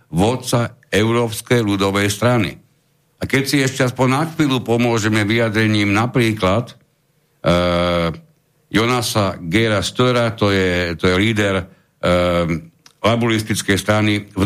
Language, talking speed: Slovak, 95 wpm